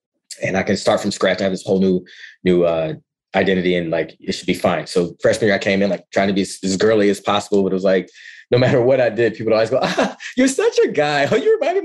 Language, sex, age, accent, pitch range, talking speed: English, male, 20-39, American, 95-130 Hz, 285 wpm